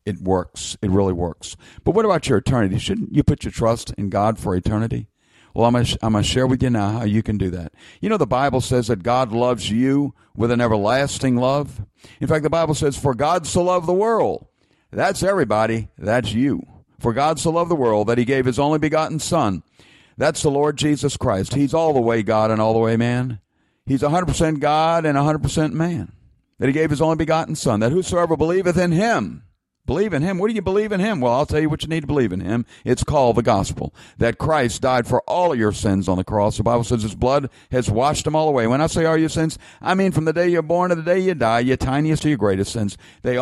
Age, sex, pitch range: 50-69, male, 110-155 Hz